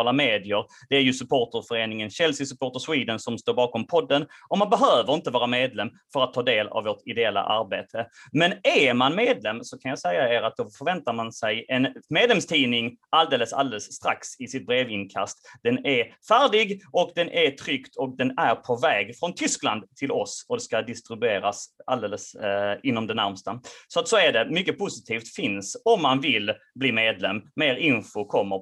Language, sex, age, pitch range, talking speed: Swedish, male, 30-49, 110-180 Hz, 185 wpm